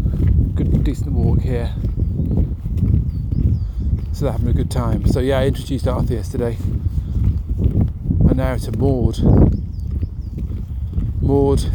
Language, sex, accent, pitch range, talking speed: English, male, British, 85-110 Hz, 105 wpm